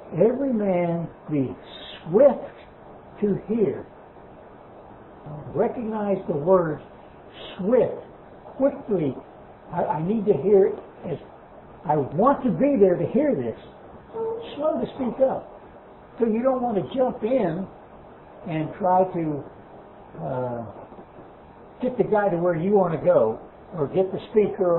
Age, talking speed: 60-79, 135 wpm